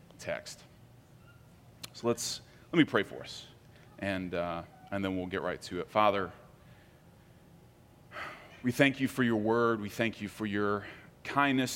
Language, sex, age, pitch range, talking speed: English, male, 30-49, 100-125 Hz, 155 wpm